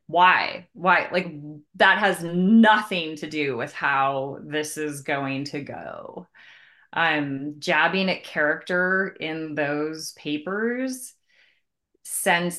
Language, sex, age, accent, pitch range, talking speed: English, female, 30-49, American, 150-185 Hz, 115 wpm